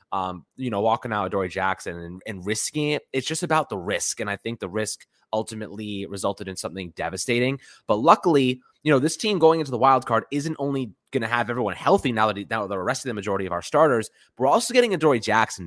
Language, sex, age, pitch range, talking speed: English, male, 20-39, 110-135 Hz, 235 wpm